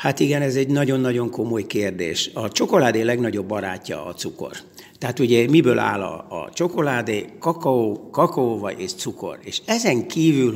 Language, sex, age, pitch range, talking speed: Hungarian, male, 60-79, 110-155 Hz, 155 wpm